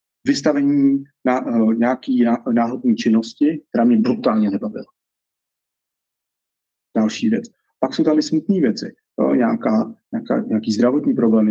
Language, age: Czech, 30-49